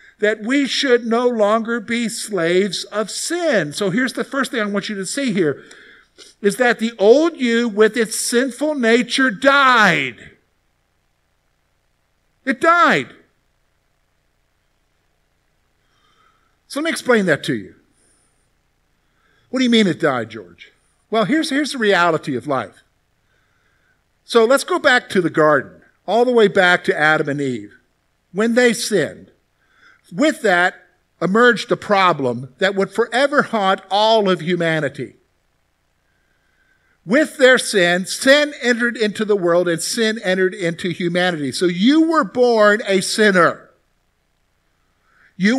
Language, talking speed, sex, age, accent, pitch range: English, 135 wpm, male, 50-69, American, 170-245 Hz